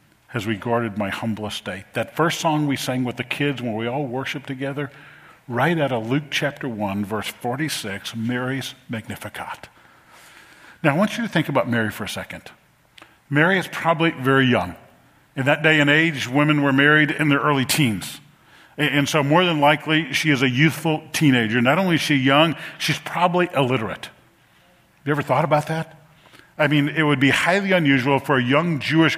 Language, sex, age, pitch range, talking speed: English, male, 50-69, 125-155 Hz, 185 wpm